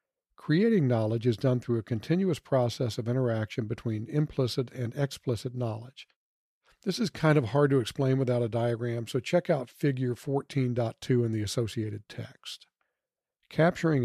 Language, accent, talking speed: English, American, 150 wpm